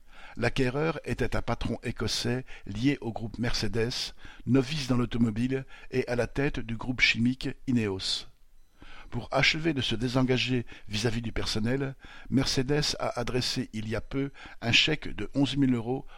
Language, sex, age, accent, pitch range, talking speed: French, male, 50-69, French, 115-135 Hz, 150 wpm